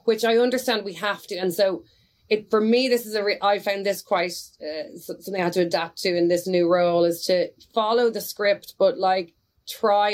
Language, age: English, 30-49